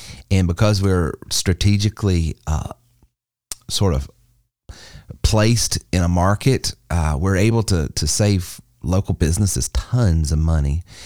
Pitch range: 80-105 Hz